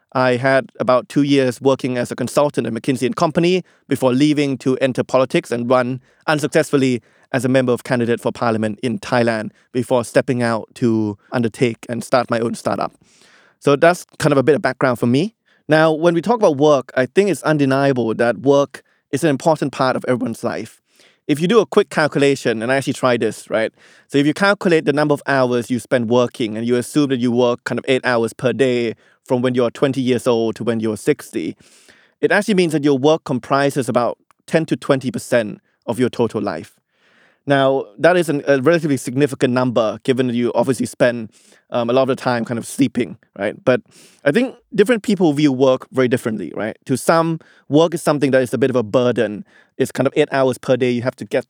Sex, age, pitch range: male, 20-39, 120-150 Hz